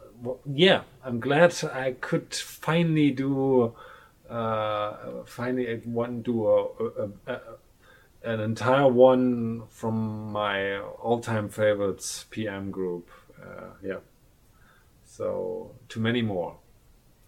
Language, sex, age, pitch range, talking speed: English, male, 30-49, 100-125 Hz, 110 wpm